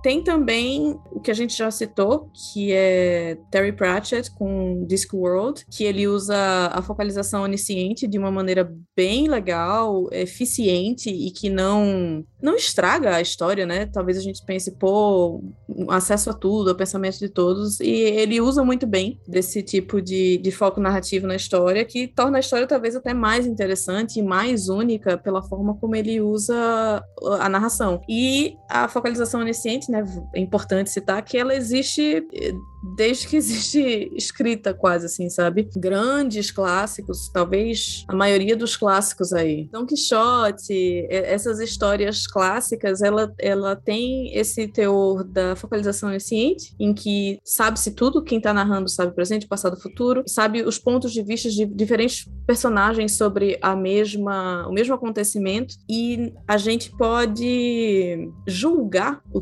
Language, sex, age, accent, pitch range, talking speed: Portuguese, female, 20-39, Brazilian, 190-230 Hz, 145 wpm